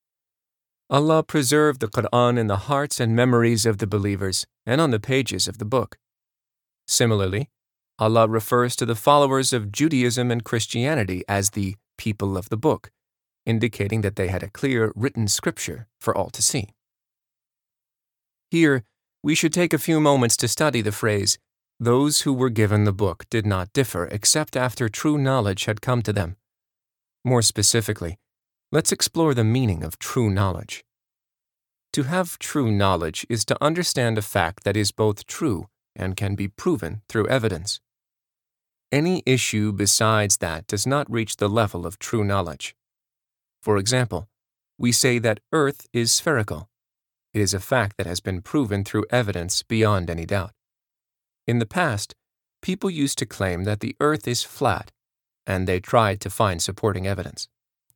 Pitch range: 100-130 Hz